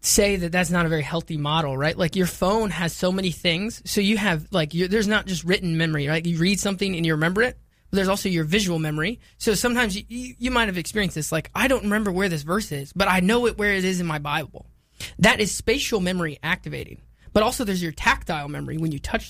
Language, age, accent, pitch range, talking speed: English, 20-39, American, 160-205 Hz, 250 wpm